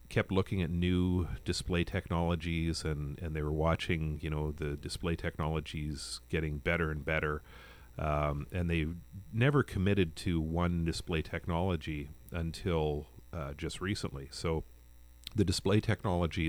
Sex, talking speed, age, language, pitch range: male, 135 wpm, 40-59, English, 75-85 Hz